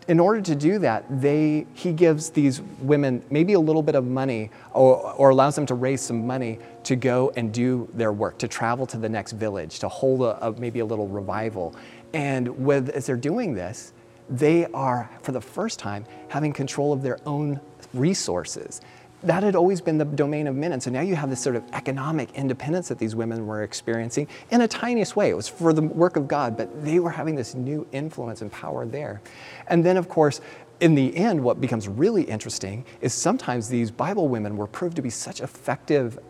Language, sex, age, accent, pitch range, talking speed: English, male, 30-49, American, 115-150 Hz, 210 wpm